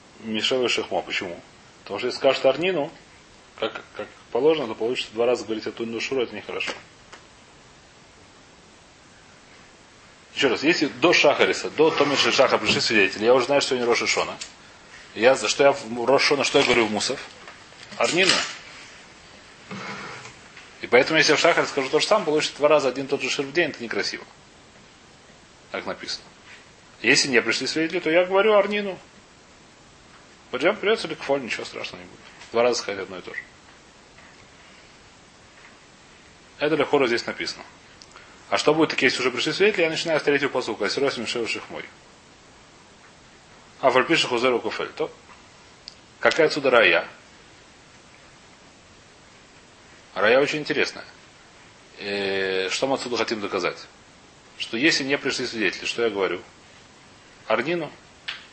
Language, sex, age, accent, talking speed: Russian, male, 30-49, native, 145 wpm